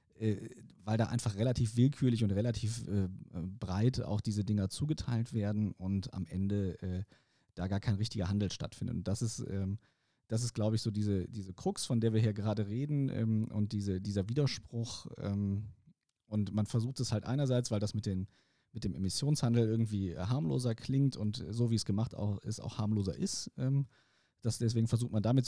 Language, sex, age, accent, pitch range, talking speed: German, male, 40-59, German, 100-120 Hz, 175 wpm